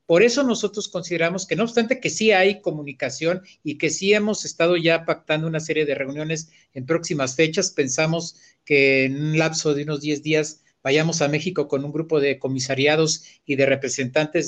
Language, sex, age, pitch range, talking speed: Spanish, male, 50-69, 145-175 Hz, 185 wpm